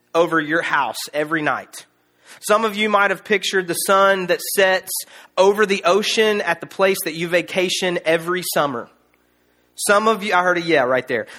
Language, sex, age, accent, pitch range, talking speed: English, male, 30-49, American, 160-210 Hz, 185 wpm